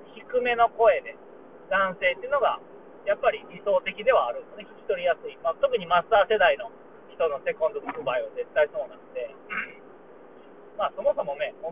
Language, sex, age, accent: Japanese, male, 40-59, native